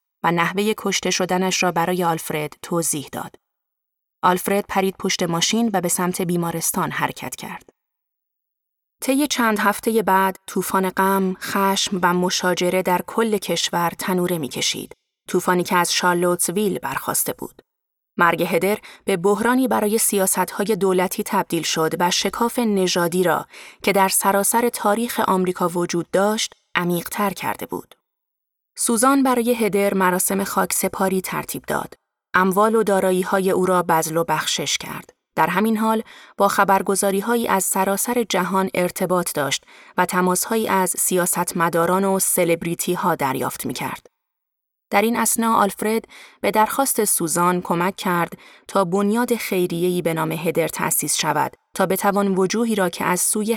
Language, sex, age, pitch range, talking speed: Persian, female, 30-49, 180-210 Hz, 135 wpm